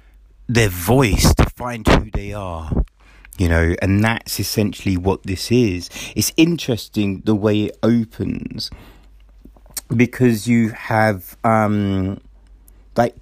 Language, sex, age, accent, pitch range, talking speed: English, male, 30-49, British, 100-125 Hz, 120 wpm